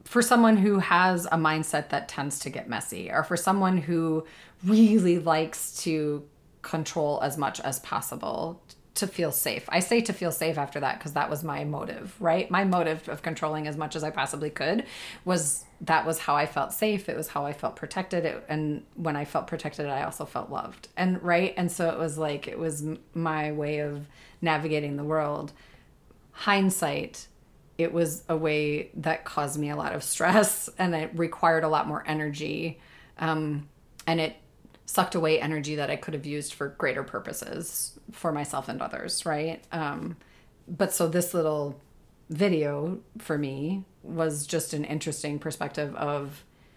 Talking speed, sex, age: 175 wpm, female, 30-49